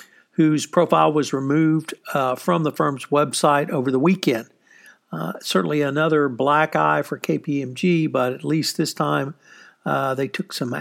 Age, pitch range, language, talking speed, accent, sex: 60-79, 130-160 Hz, English, 155 wpm, American, male